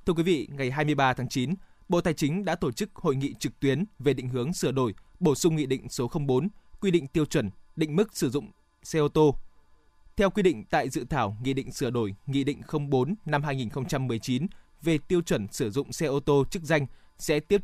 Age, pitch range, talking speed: 20-39, 130-175 Hz, 225 wpm